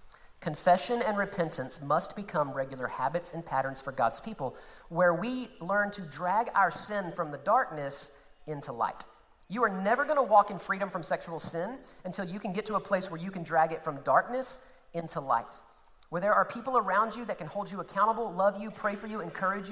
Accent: American